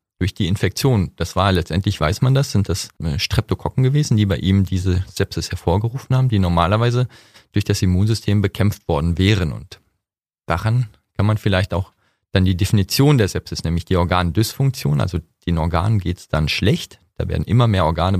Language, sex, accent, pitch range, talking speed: German, male, German, 90-115 Hz, 180 wpm